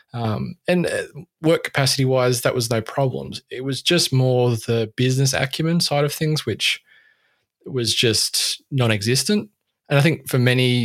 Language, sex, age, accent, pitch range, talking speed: English, male, 20-39, Australian, 115-140 Hz, 155 wpm